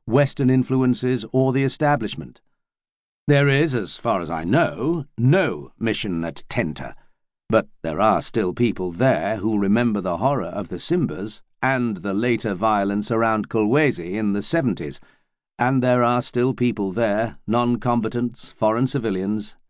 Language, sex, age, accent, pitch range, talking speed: English, male, 50-69, British, 110-135 Hz, 145 wpm